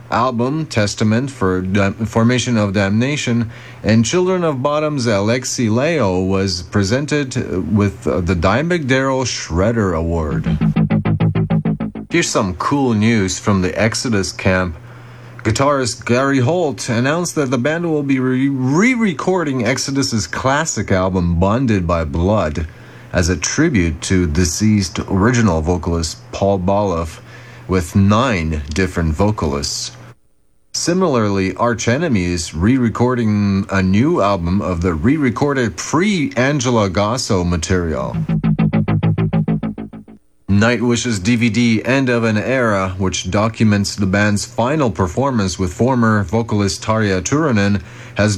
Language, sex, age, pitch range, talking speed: English, male, 30-49, 95-125 Hz, 110 wpm